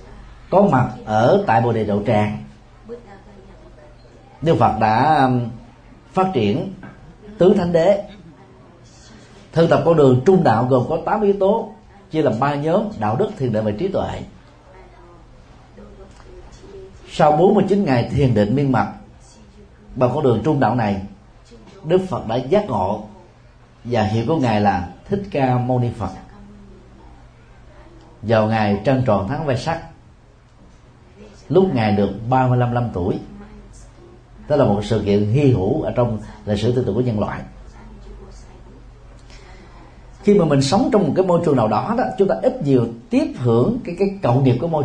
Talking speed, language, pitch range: 160 wpm, Vietnamese, 110-145 Hz